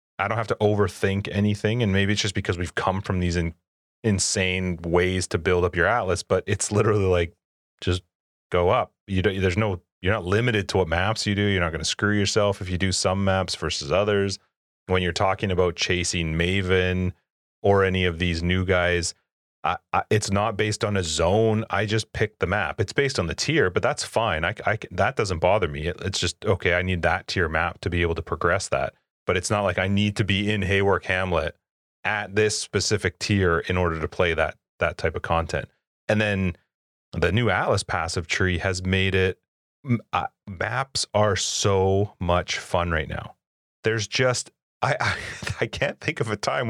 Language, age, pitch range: English, 30-49, 90-105 Hz